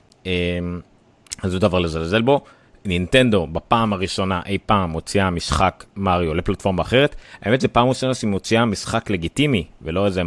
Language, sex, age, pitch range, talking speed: Hebrew, male, 30-49, 90-120 Hz, 145 wpm